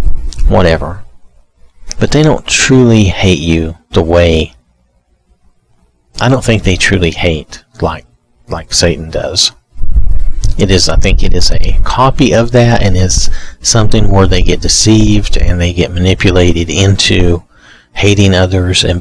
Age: 40-59